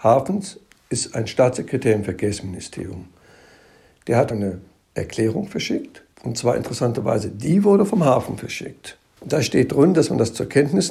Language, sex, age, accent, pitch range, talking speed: German, male, 60-79, German, 110-140 Hz, 150 wpm